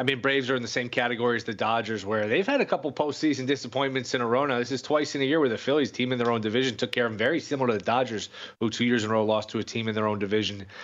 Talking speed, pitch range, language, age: 325 wpm, 110-130 Hz, English, 30-49